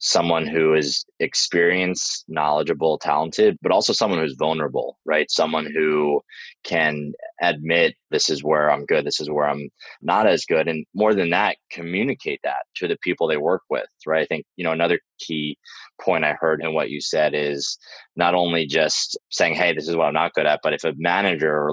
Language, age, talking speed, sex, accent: English, 20-39, 200 wpm, male, American